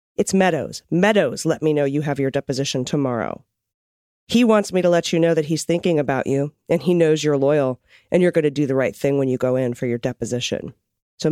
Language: English